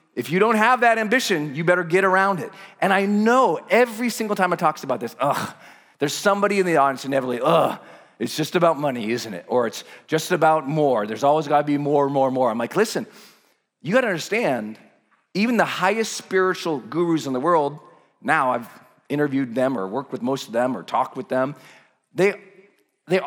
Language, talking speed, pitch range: English, 200 wpm, 130-180 Hz